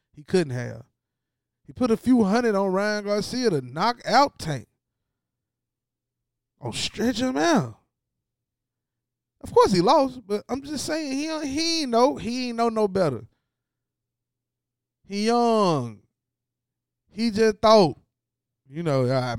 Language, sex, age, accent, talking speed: English, male, 20-39, American, 130 wpm